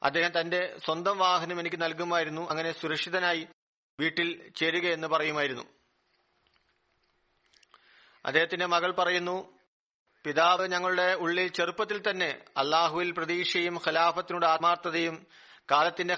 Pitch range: 165-180 Hz